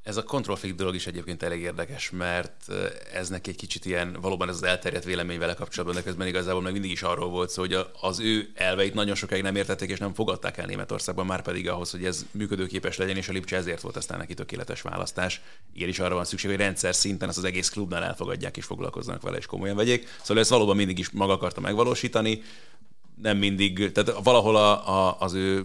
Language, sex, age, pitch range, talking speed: Hungarian, male, 30-49, 90-100 Hz, 215 wpm